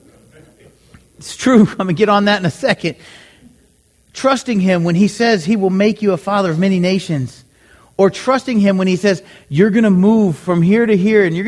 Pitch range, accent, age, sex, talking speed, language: 170-225 Hz, American, 40-59, male, 215 wpm, English